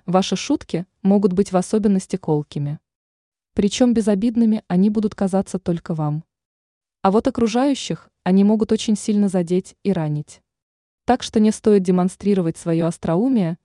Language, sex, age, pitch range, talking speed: Russian, female, 20-39, 170-220 Hz, 135 wpm